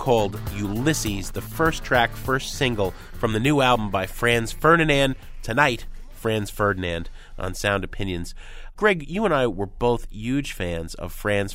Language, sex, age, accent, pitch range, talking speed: English, male, 30-49, American, 100-150 Hz, 155 wpm